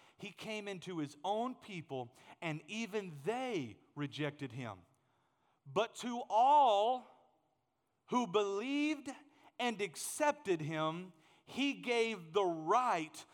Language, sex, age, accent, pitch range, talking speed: English, male, 40-59, American, 165-265 Hz, 105 wpm